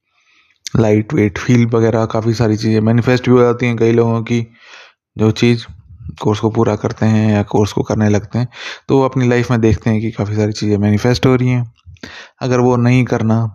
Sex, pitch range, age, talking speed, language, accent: male, 105-125 Hz, 20-39, 205 wpm, Hindi, native